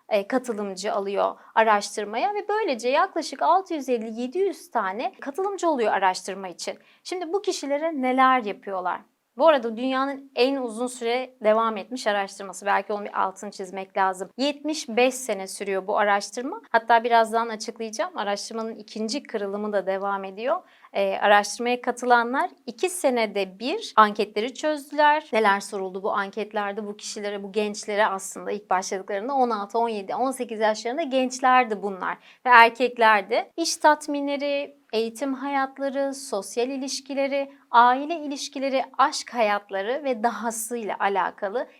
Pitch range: 210-270 Hz